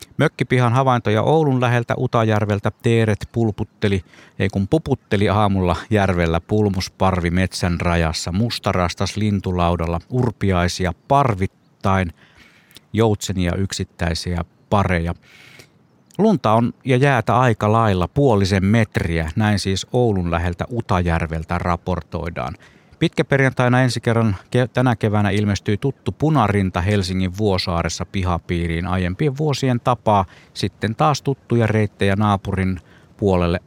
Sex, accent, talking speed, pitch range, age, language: male, native, 100 wpm, 90-120 Hz, 50-69, Finnish